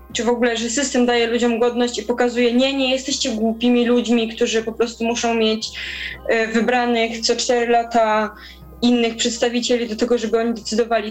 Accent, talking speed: native, 165 wpm